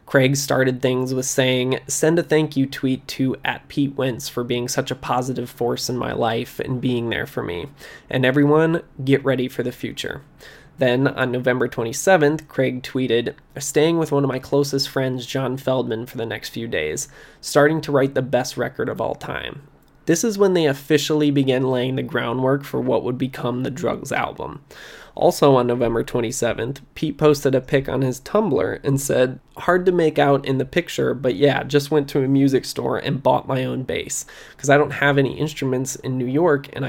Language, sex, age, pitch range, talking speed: English, male, 20-39, 130-145 Hz, 200 wpm